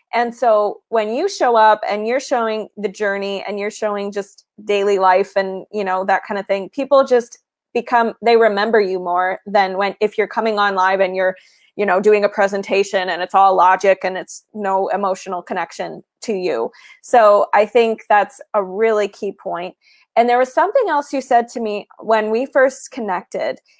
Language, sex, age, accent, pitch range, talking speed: English, female, 20-39, American, 200-240 Hz, 195 wpm